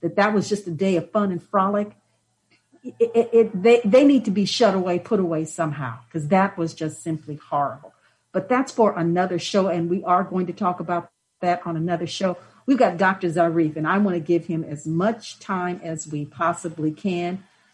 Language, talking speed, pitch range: English, 210 wpm, 170-200 Hz